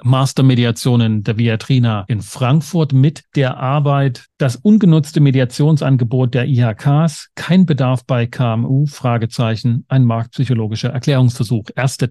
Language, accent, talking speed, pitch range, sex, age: German, German, 110 wpm, 125-155 Hz, male, 40-59